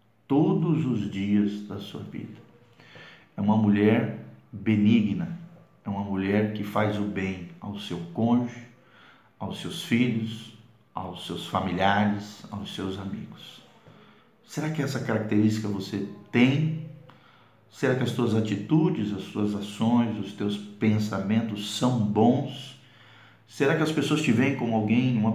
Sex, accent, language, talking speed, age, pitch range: male, Brazilian, Portuguese, 135 wpm, 50-69, 105-130 Hz